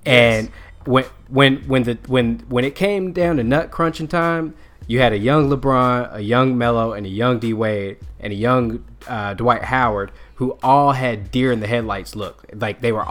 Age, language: 20-39, English